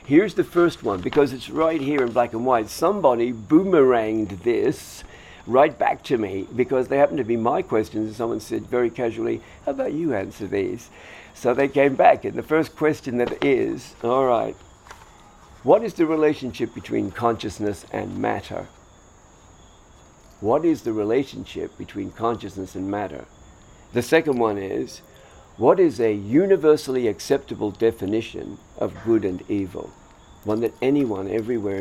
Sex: male